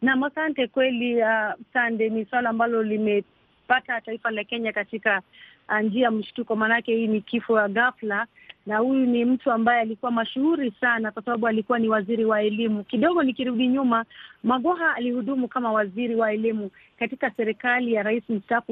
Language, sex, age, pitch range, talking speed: Swahili, female, 30-49, 220-255 Hz, 160 wpm